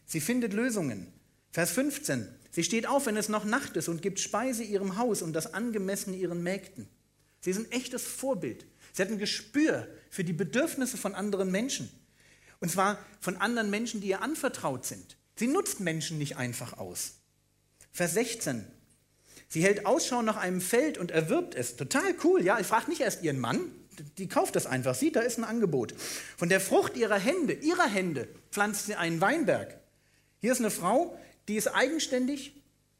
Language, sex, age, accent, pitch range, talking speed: German, male, 40-59, German, 160-245 Hz, 180 wpm